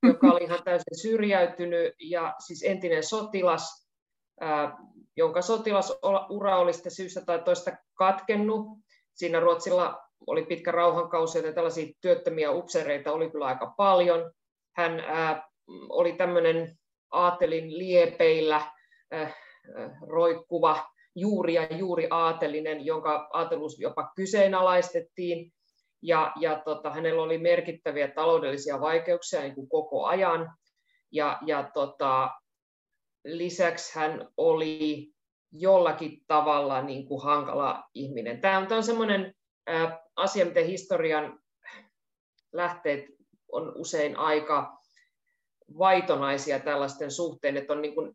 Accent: native